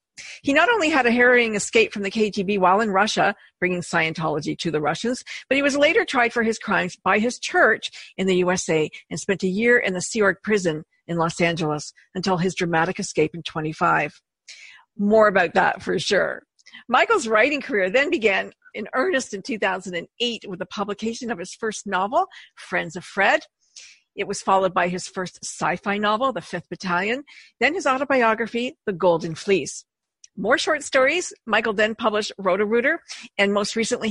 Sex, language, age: female, English, 50-69